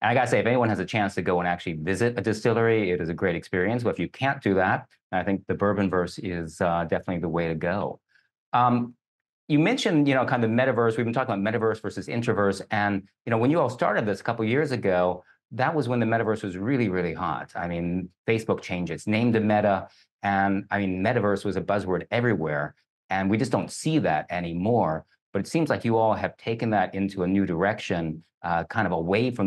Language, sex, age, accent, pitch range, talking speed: English, male, 40-59, American, 95-120 Hz, 240 wpm